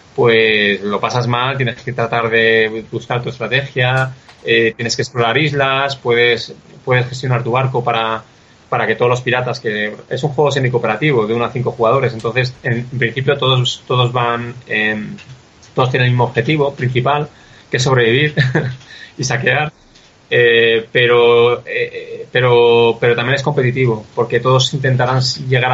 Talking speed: 160 wpm